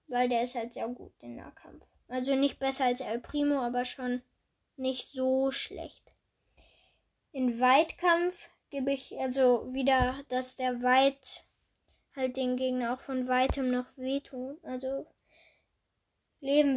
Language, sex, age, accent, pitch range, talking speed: German, female, 10-29, German, 255-290 Hz, 135 wpm